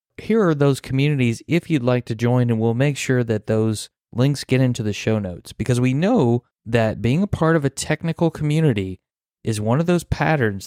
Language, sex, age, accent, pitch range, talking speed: English, male, 30-49, American, 110-140 Hz, 210 wpm